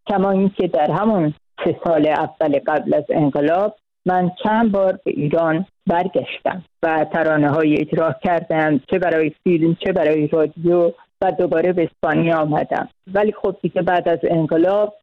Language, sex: Persian, female